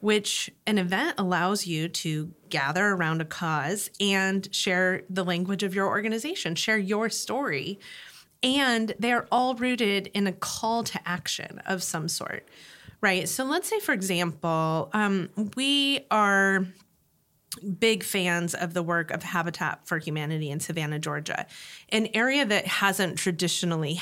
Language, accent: English, American